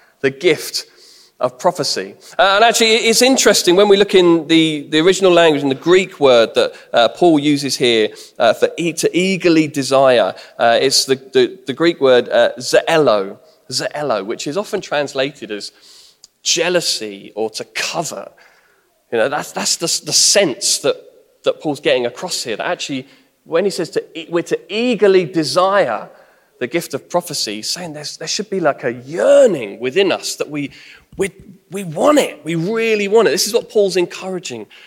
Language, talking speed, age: English, 175 wpm, 20-39